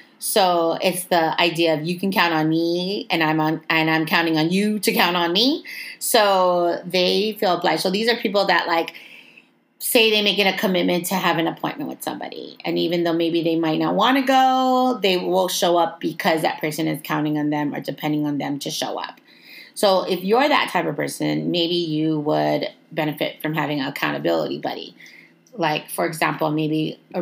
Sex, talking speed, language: female, 205 wpm, English